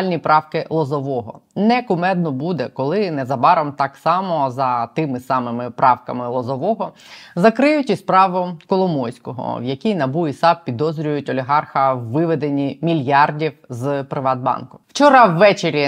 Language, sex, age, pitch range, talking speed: Ukrainian, female, 20-39, 135-175 Hz, 115 wpm